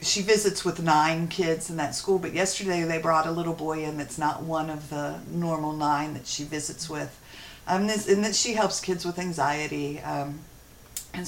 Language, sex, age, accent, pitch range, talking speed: English, female, 50-69, American, 155-185 Hz, 205 wpm